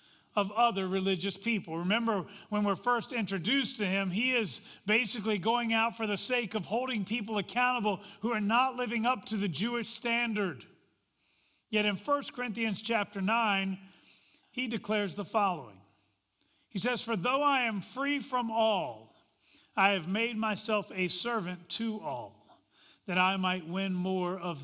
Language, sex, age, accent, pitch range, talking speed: English, male, 40-59, American, 190-240 Hz, 160 wpm